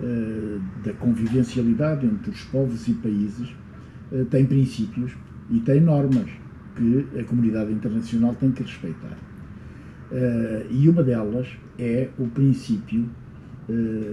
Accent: Portuguese